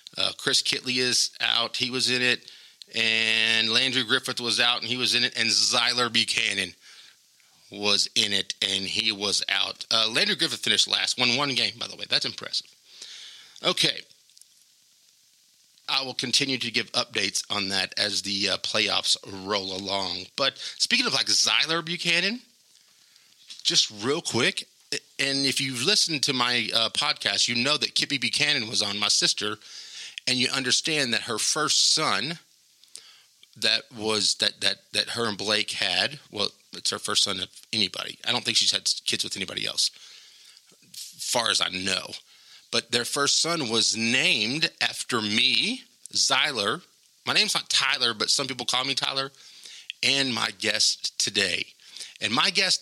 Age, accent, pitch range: 30-49, American, 105-135 Hz